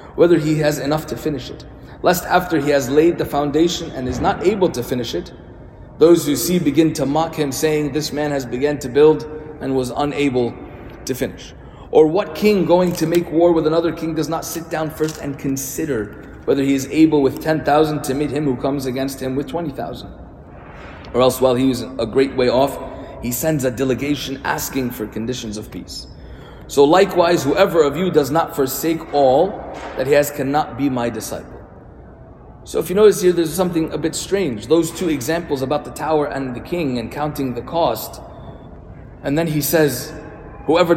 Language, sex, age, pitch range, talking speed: English, male, 30-49, 130-160 Hz, 195 wpm